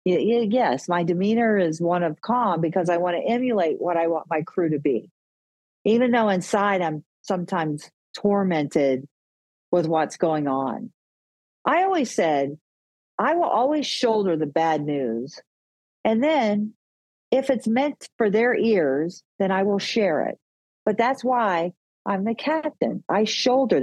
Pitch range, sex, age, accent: 155-225 Hz, female, 50-69, American